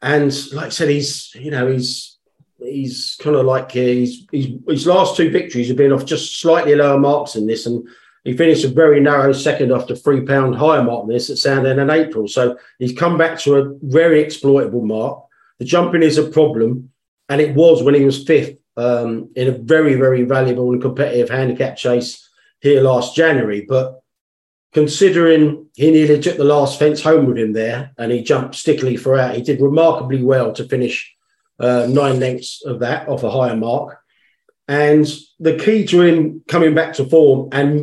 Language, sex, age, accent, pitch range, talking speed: English, male, 40-59, British, 125-150 Hz, 195 wpm